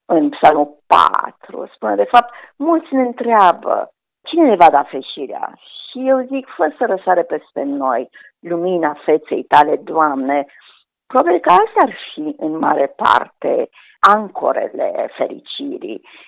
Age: 50-69